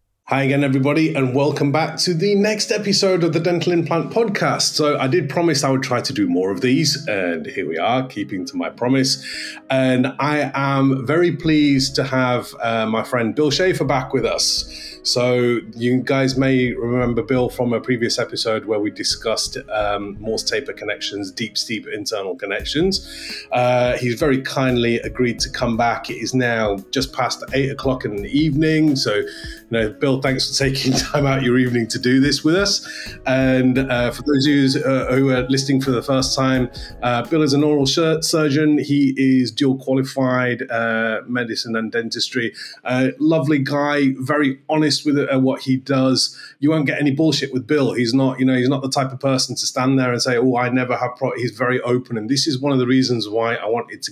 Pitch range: 125-150 Hz